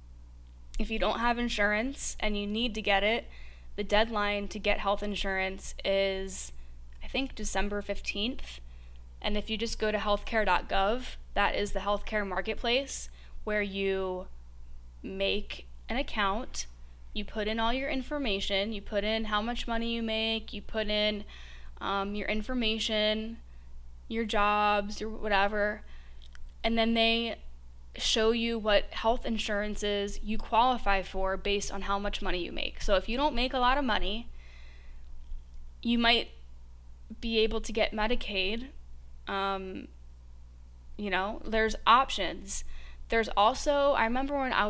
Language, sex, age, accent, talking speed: English, female, 10-29, American, 145 wpm